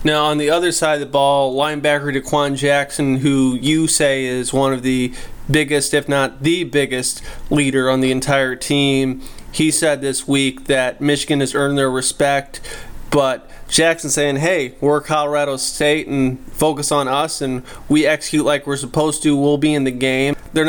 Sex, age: male, 20-39